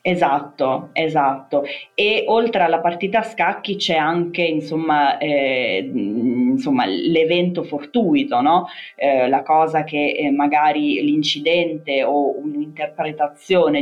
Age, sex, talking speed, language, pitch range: 20-39, female, 110 wpm, Italian, 140-180 Hz